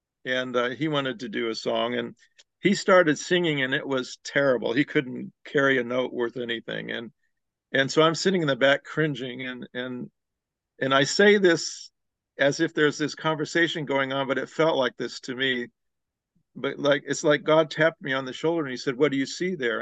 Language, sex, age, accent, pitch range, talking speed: English, male, 50-69, American, 130-155 Hz, 210 wpm